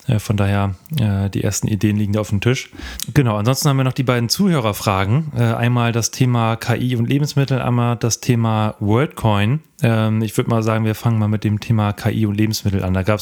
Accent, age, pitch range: German, 30-49, 105-120 Hz